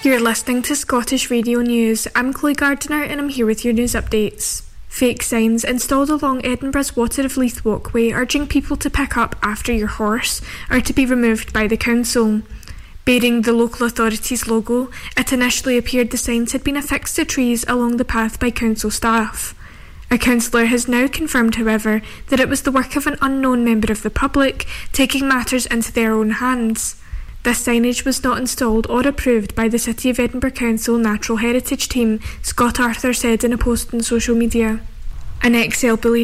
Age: 10-29